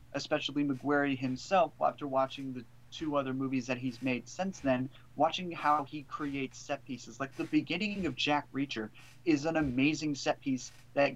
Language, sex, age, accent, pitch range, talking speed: English, male, 30-49, American, 125-150 Hz, 170 wpm